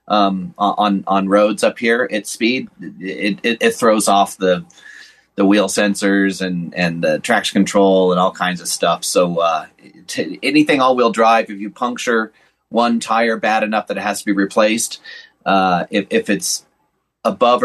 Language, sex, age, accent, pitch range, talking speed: English, male, 30-49, American, 105-145 Hz, 170 wpm